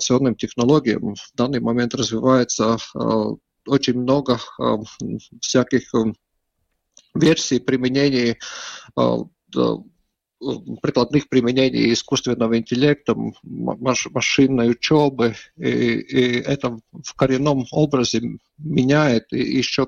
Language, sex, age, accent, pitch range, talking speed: Russian, male, 50-69, native, 115-130 Hz, 90 wpm